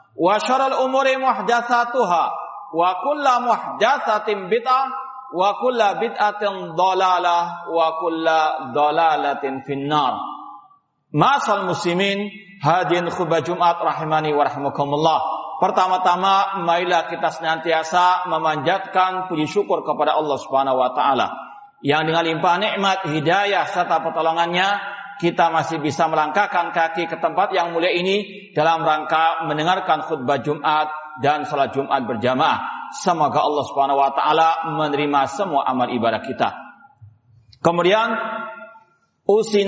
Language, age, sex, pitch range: Indonesian, 50-69, male, 155-200 Hz